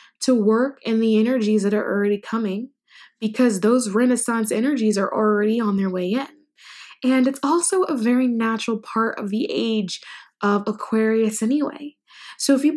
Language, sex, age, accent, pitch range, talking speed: English, female, 10-29, American, 215-260 Hz, 165 wpm